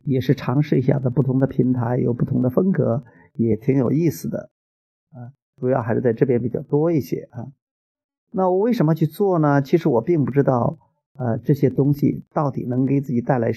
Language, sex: Chinese, male